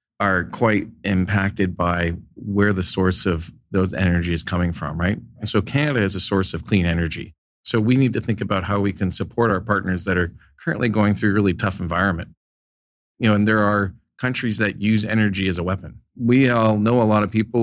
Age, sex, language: 40-59, male, English